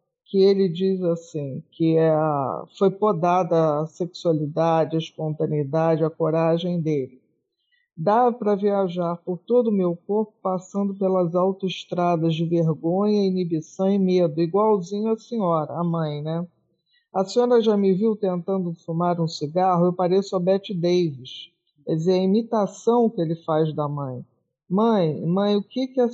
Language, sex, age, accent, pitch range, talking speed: Portuguese, male, 50-69, Brazilian, 165-205 Hz, 150 wpm